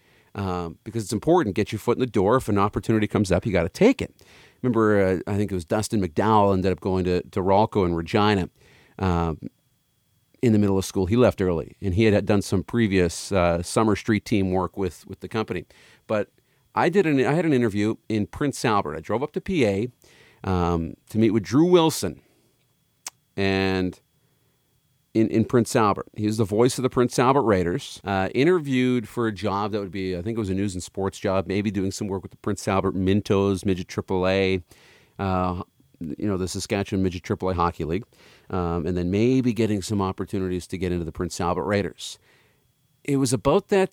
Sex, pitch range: male, 95-120 Hz